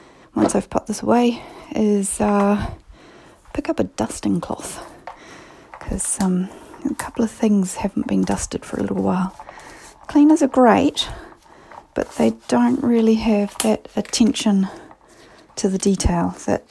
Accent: Australian